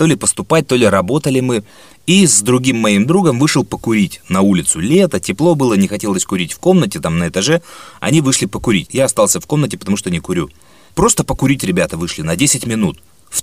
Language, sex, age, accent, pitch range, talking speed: Russian, male, 30-49, native, 110-160 Hz, 205 wpm